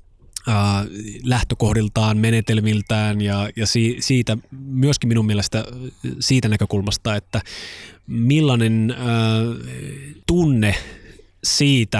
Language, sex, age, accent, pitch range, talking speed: Finnish, male, 20-39, native, 100-130 Hz, 70 wpm